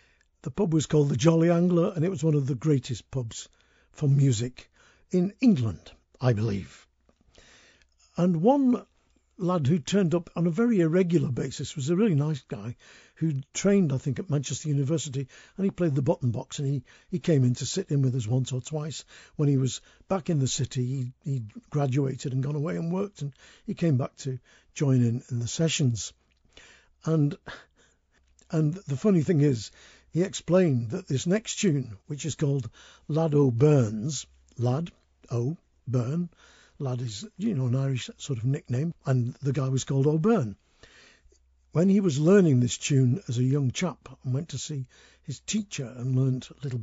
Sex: male